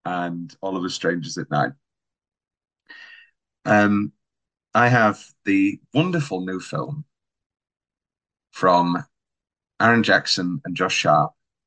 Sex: male